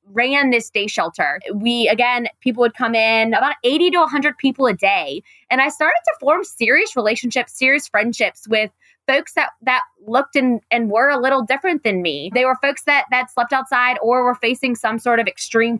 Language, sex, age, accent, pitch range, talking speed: English, female, 20-39, American, 230-280 Hz, 200 wpm